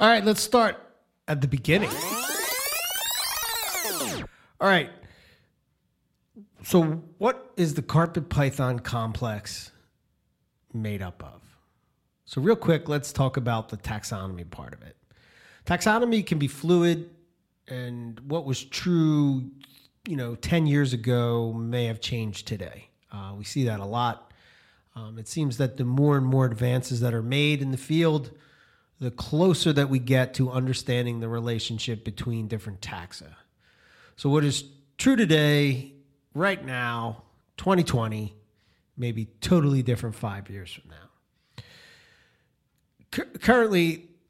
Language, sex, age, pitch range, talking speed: English, male, 30-49, 115-150 Hz, 130 wpm